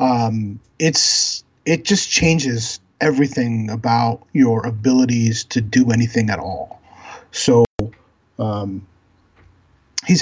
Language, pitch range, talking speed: English, 120-165 Hz, 100 wpm